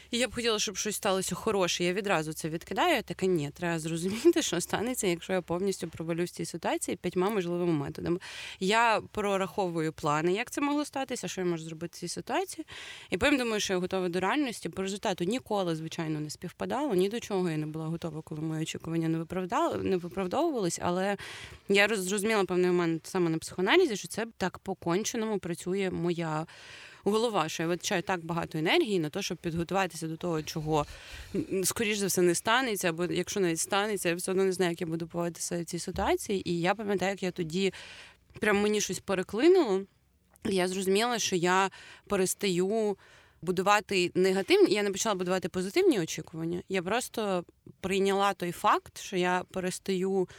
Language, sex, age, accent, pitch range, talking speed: Ukrainian, female, 20-39, native, 170-205 Hz, 180 wpm